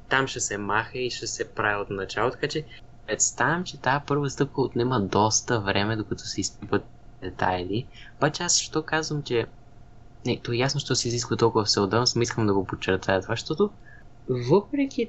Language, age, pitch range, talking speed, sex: Bulgarian, 20-39, 110-145 Hz, 180 wpm, male